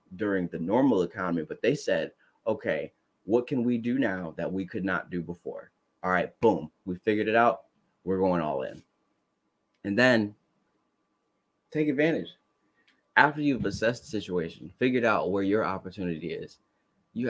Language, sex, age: English, male, 20-39